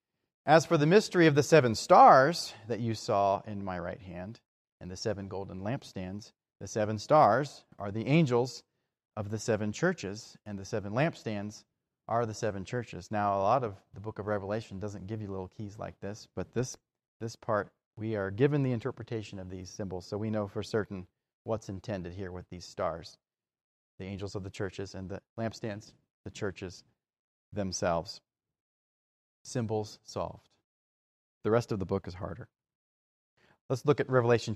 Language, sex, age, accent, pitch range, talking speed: English, male, 30-49, American, 100-120 Hz, 175 wpm